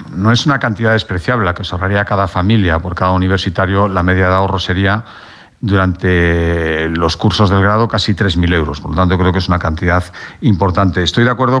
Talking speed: 200 wpm